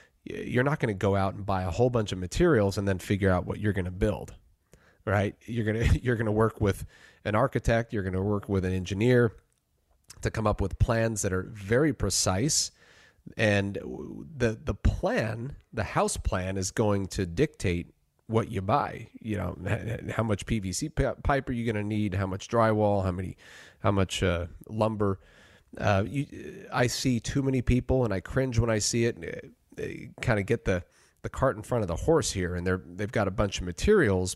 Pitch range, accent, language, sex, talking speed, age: 95-120 Hz, American, English, male, 205 wpm, 30-49